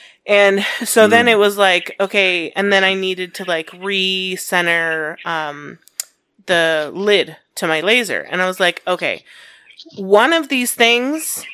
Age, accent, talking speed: 30-49, American, 150 wpm